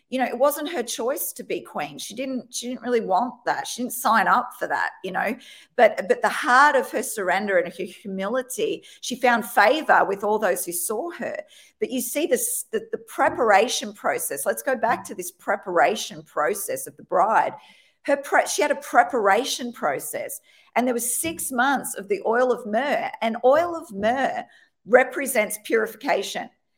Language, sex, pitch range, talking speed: English, female, 215-315 Hz, 190 wpm